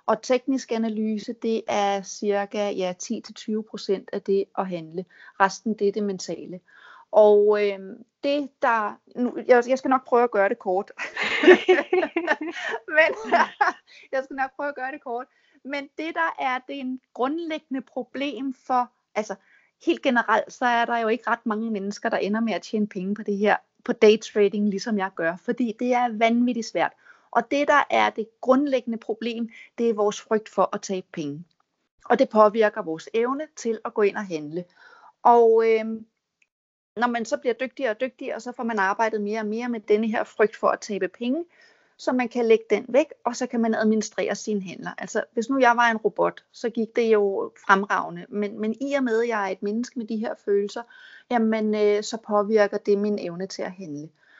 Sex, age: female, 30-49